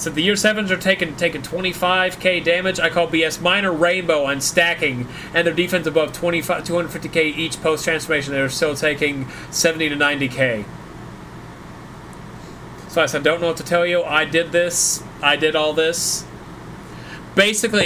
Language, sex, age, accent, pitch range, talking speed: English, male, 30-49, American, 135-175 Hz, 160 wpm